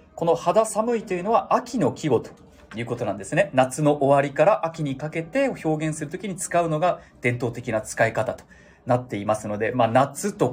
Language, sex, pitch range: Japanese, male, 130-195 Hz